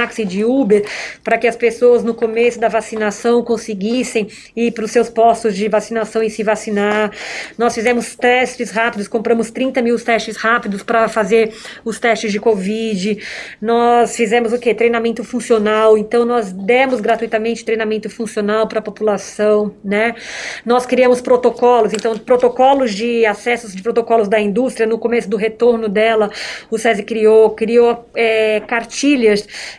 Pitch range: 220-240 Hz